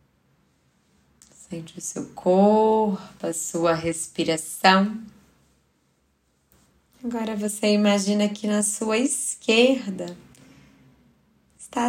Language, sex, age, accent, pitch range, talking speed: Portuguese, female, 20-39, Brazilian, 170-220 Hz, 75 wpm